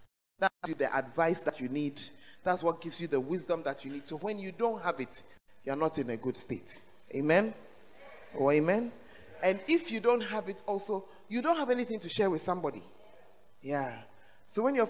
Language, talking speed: English, 200 wpm